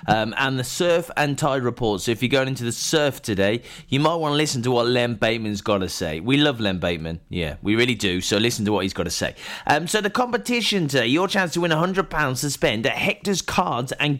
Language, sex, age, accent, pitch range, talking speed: English, male, 30-49, British, 110-160 Hz, 250 wpm